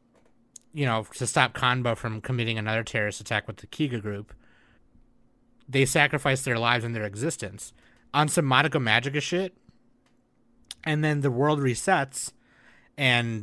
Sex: male